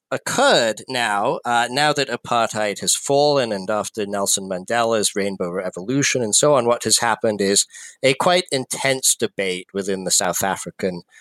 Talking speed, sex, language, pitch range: 155 wpm, male, English, 95-125 Hz